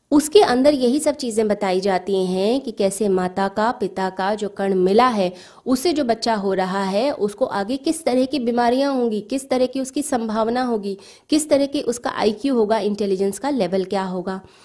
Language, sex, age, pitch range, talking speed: Hindi, female, 20-39, 195-240 Hz, 195 wpm